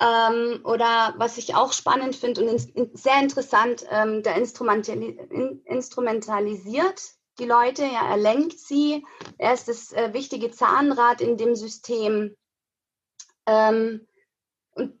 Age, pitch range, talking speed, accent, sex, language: 30-49, 220-275 Hz, 115 wpm, German, female, German